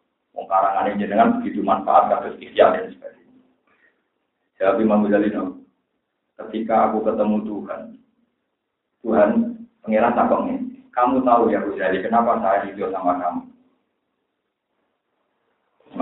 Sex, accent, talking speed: male, native, 85 wpm